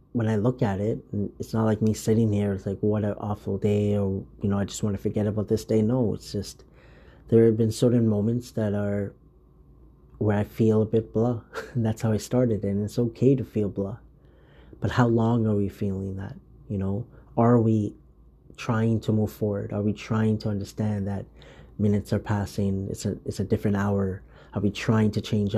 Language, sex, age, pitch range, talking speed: English, male, 30-49, 100-115 Hz, 215 wpm